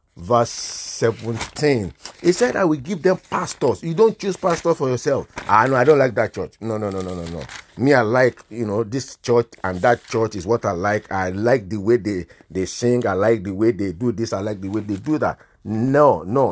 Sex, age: male, 50-69